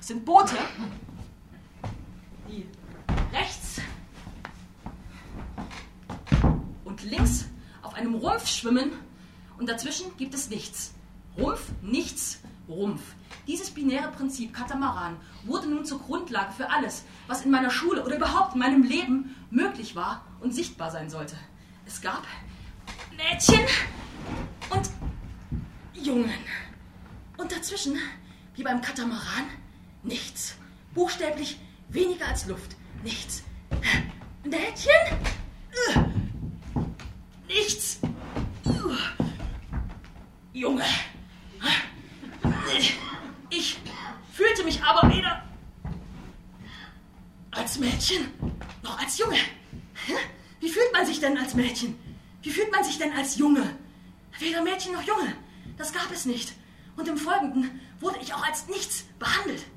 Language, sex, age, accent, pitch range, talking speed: German, female, 30-49, German, 230-335 Hz, 105 wpm